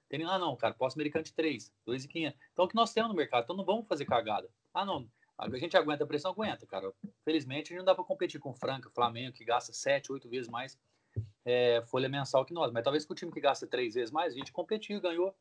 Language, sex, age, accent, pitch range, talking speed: Portuguese, male, 20-39, Brazilian, 130-165 Hz, 255 wpm